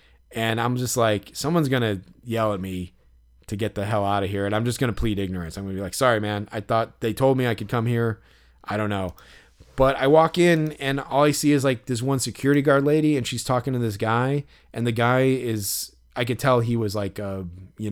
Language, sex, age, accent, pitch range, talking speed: English, male, 20-39, American, 110-140 Hz, 255 wpm